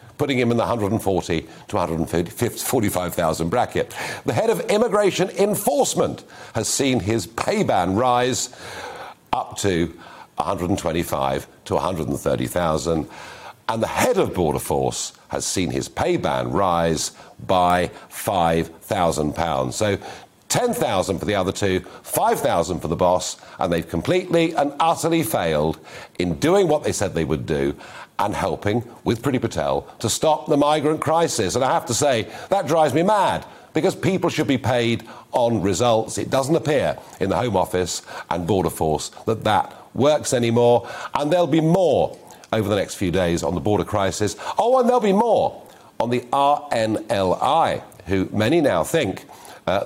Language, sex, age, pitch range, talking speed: English, male, 50-69, 90-150 Hz, 155 wpm